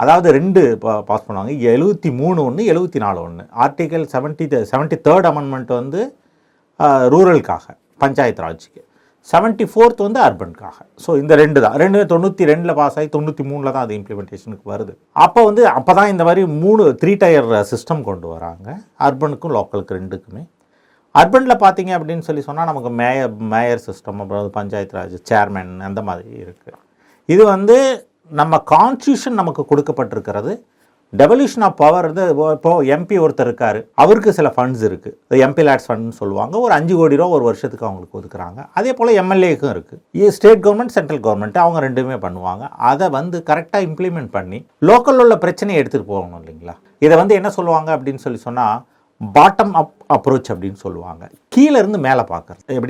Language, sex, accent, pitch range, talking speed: Tamil, male, native, 105-175 Hz, 85 wpm